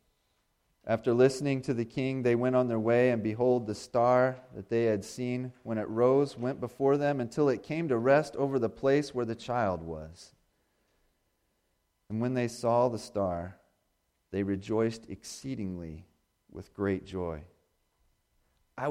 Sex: male